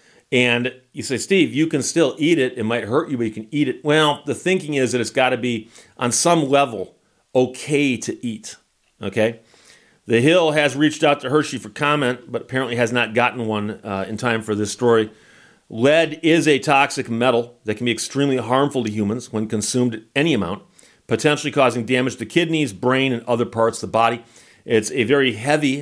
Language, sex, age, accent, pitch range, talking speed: English, male, 40-59, American, 115-145 Hz, 205 wpm